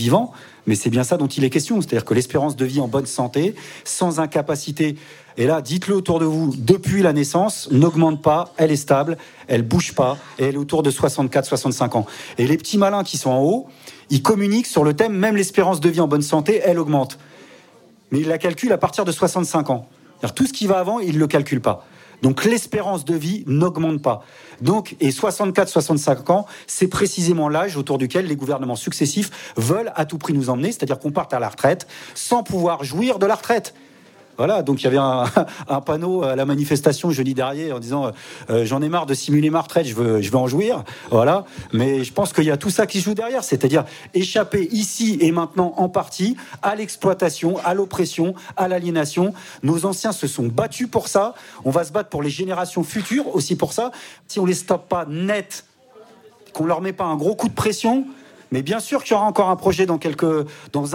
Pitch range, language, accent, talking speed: 140-195 Hz, English, French, 215 wpm